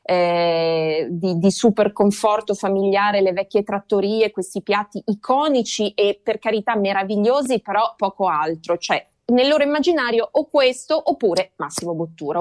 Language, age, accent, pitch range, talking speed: Italian, 20-39, native, 195-245 Hz, 135 wpm